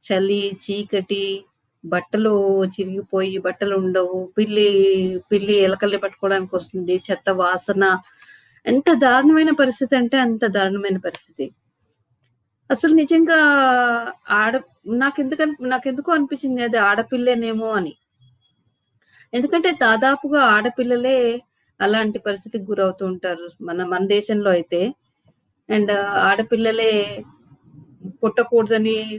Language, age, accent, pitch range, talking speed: Telugu, 20-39, native, 185-250 Hz, 90 wpm